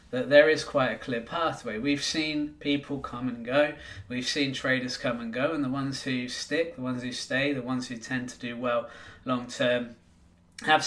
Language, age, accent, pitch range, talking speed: English, 20-39, British, 125-145 Hz, 210 wpm